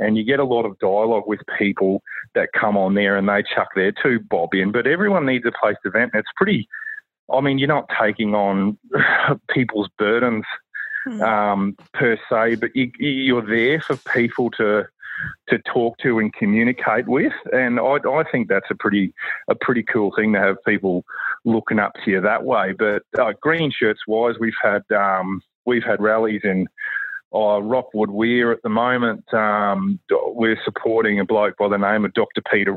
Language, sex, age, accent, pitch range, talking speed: English, male, 30-49, Australian, 100-115 Hz, 185 wpm